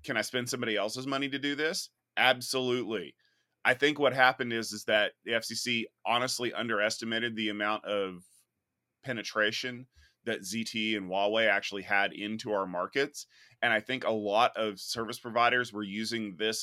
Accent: American